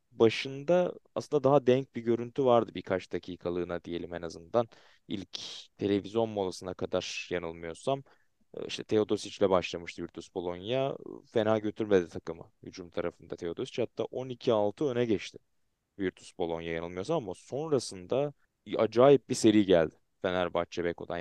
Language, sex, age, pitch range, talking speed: Turkish, male, 20-39, 90-110 Hz, 120 wpm